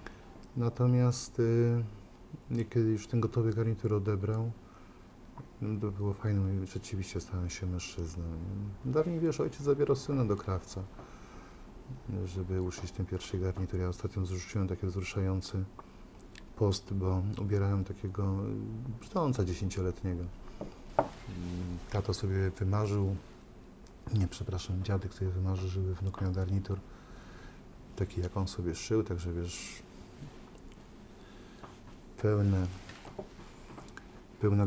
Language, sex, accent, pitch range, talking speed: Polish, male, native, 95-115 Hz, 105 wpm